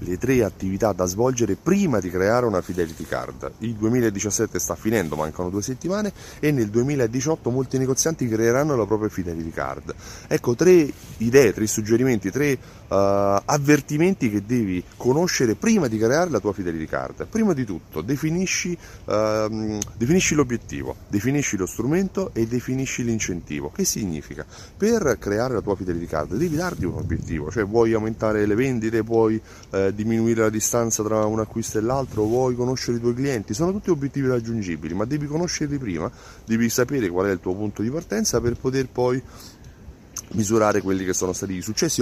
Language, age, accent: Italian, 30-49, native